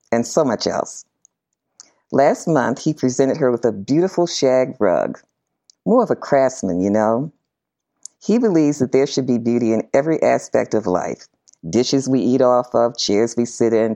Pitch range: 105-140 Hz